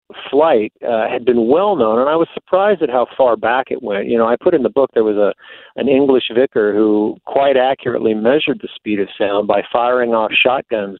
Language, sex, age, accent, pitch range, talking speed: English, male, 50-69, American, 110-125 Hz, 225 wpm